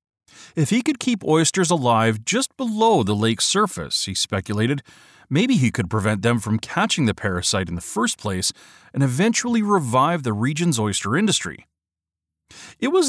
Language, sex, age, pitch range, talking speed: English, male, 40-59, 105-160 Hz, 160 wpm